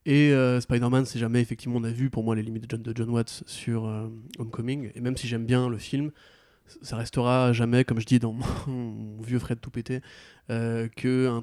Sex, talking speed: male, 225 wpm